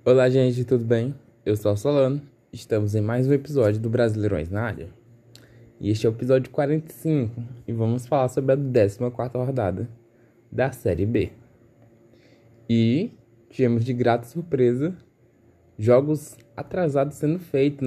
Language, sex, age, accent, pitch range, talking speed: Portuguese, male, 10-29, Brazilian, 110-130 Hz, 140 wpm